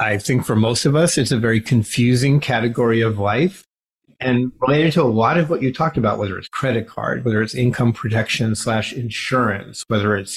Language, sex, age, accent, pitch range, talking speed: English, male, 30-49, American, 115-150 Hz, 205 wpm